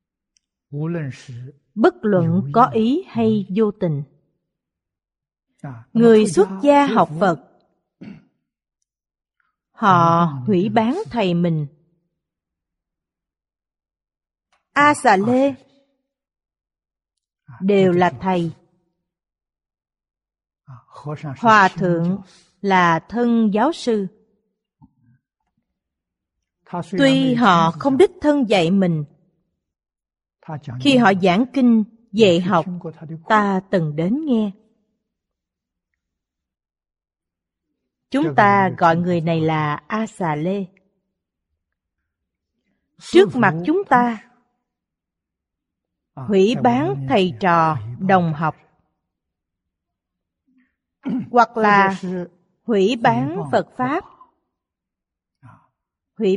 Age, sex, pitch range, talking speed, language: 30-49, female, 160-230 Hz, 75 wpm, Vietnamese